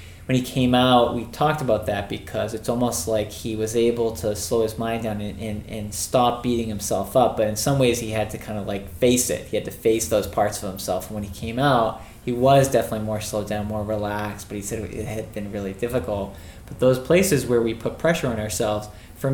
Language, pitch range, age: English, 100-120 Hz, 20-39